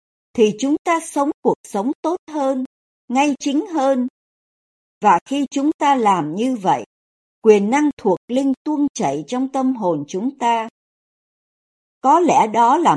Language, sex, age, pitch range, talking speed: Vietnamese, male, 60-79, 195-285 Hz, 155 wpm